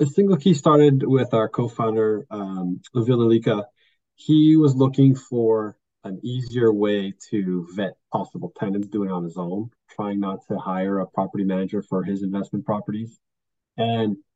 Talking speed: 160 wpm